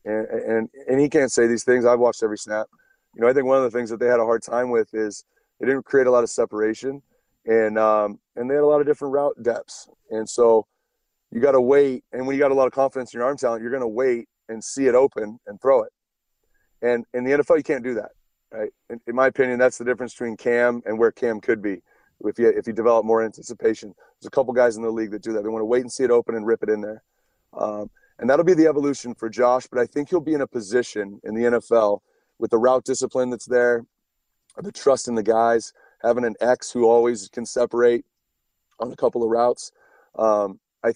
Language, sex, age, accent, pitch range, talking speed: English, male, 30-49, American, 115-130 Hz, 250 wpm